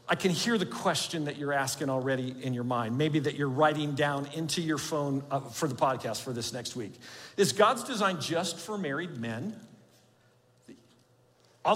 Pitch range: 145-195 Hz